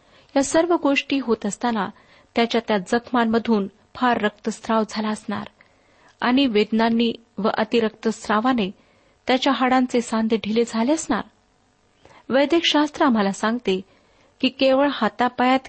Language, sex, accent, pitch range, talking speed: Marathi, female, native, 215-260 Hz, 110 wpm